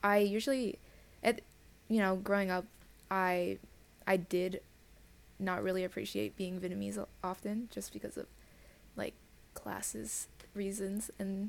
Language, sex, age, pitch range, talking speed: English, female, 20-39, 180-200 Hz, 120 wpm